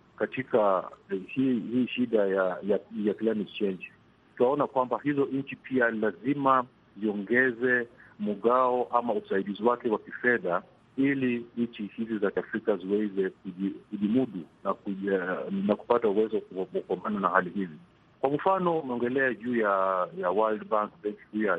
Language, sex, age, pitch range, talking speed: Swahili, male, 50-69, 105-140 Hz, 135 wpm